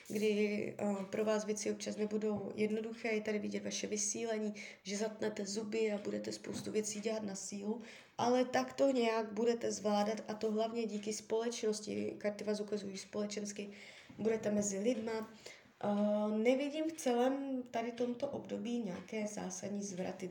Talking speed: 140 wpm